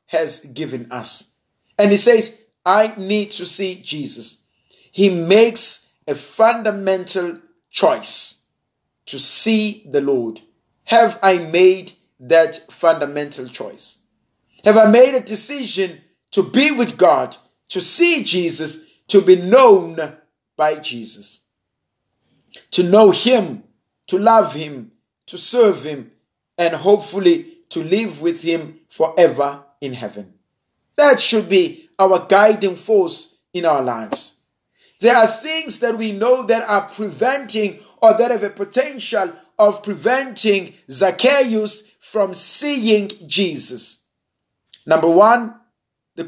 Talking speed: 120 wpm